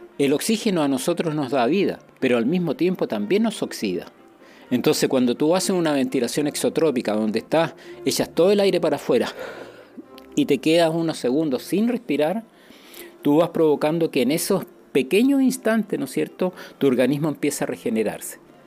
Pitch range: 120-175 Hz